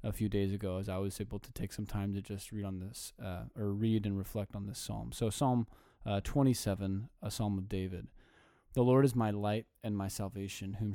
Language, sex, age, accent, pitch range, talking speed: English, male, 20-39, American, 100-115 Hz, 230 wpm